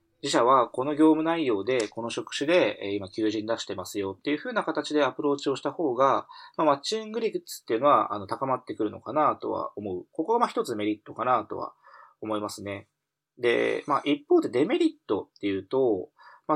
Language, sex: Japanese, male